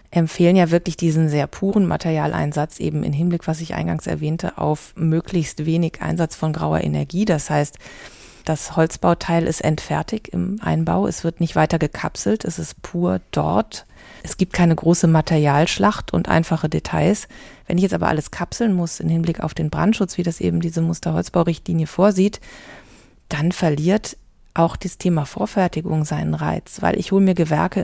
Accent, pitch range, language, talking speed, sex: German, 155-185 Hz, German, 165 wpm, female